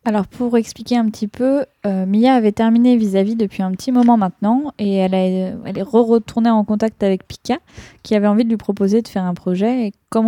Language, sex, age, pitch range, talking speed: French, female, 20-39, 195-230 Hz, 220 wpm